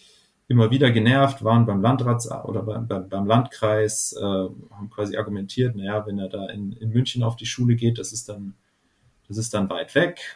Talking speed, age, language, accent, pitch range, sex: 190 wpm, 30-49, German, German, 105-125 Hz, male